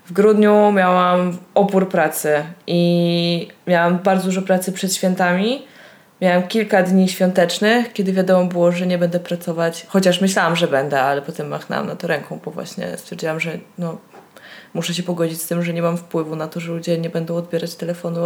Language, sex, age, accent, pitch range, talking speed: Polish, female, 20-39, native, 170-210 Hz, 175 wpm